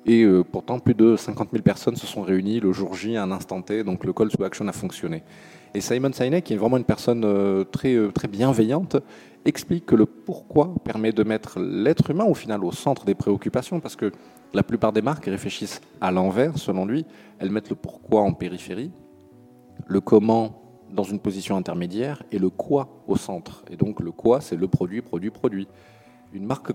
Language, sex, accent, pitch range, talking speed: French, male, French, 95-115 Hz, 195 wpm